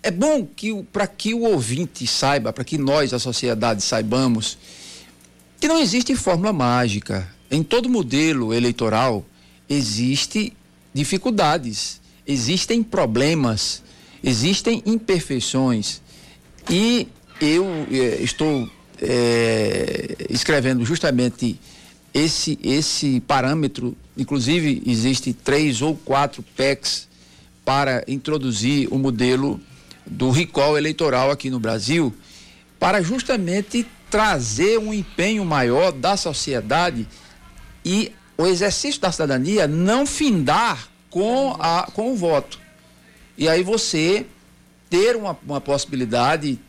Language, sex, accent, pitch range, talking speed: Portuguese, male, Brazilian, 120-180 Hz, 105 wpm